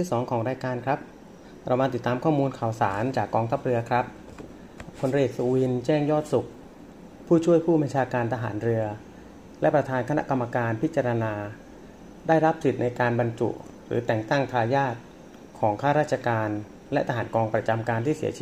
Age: 30-49